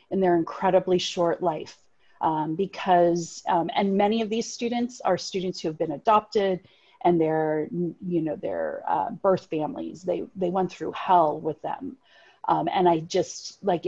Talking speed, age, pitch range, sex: 175 wpm, 30-49, 180-240 Hz, female